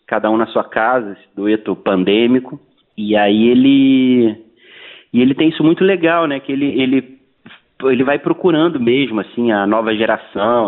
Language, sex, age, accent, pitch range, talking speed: Portuguese, male, 30-49, Brazilian, 115-165 Hz, 165 wpm